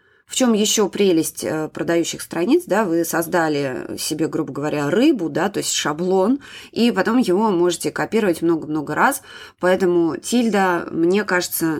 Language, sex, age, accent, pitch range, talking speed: Russian, female, 20-39, native, 160-195 Hz, 140 wpm